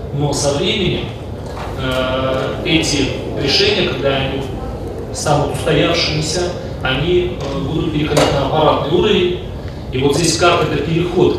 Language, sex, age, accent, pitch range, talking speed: Russian, male, 30-49, native, 120-160 Hz, 120 wpm